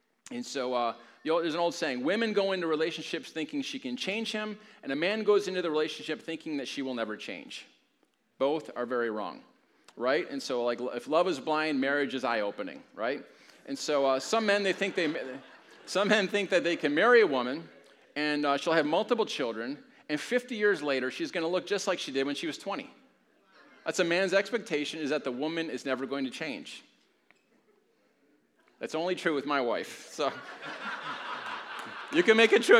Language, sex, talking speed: English, male, 190 wpm